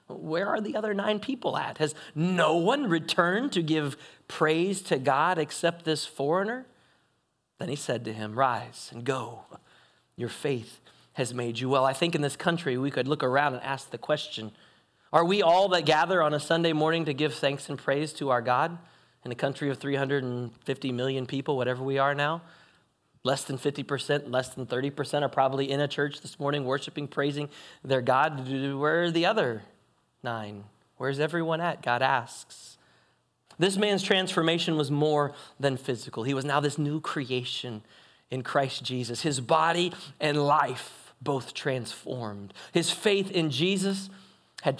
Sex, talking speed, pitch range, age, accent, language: male, 170 wpm, 130-165 Hz, 30-49, American, English